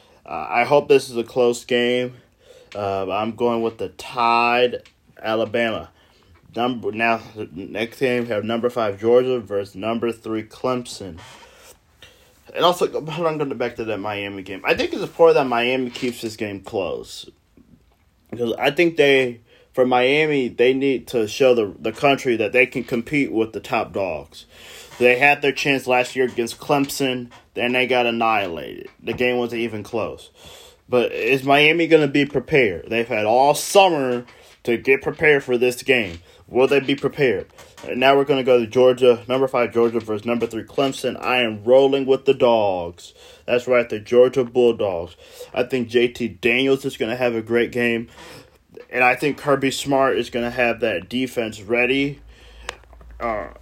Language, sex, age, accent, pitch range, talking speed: English, male, 20-39, American, 115-135 Hz, 175 wpm